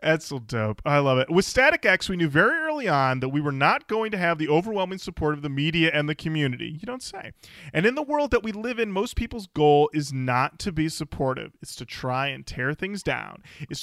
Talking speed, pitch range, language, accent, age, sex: 240 wpm, 130-185 Hz, English, American, 30-49, male